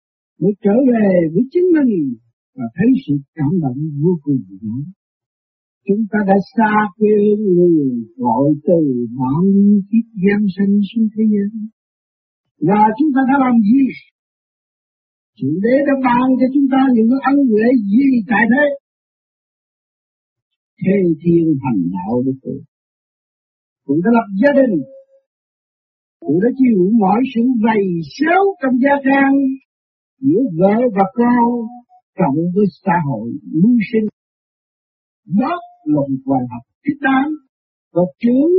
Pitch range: 175-265 Hz